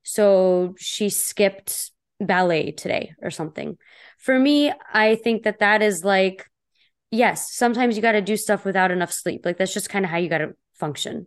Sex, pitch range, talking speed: female, 185-215 Hz, 185 wpm